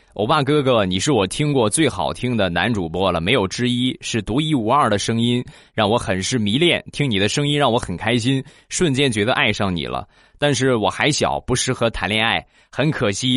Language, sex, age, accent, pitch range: Chinese, male, 20-39, native, 100-135 Hz